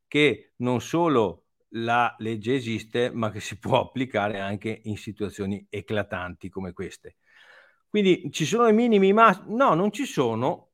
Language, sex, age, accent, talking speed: Italian, male, 50-69, native, 150 wpm